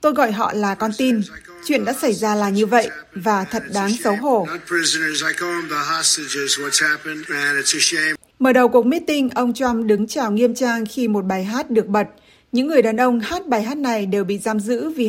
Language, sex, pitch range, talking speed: Vietnamese, female, 210-240 Hz, 185 wpm